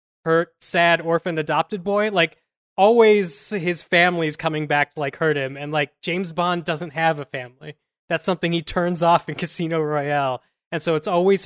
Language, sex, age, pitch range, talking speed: English, male, 20-39, 140-170 Hz, 185 wpm